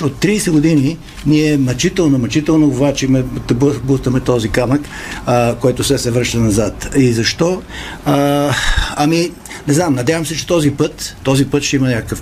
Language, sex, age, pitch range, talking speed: Bulgarian, male, 60-79, 115-145 Hz, 145 wpm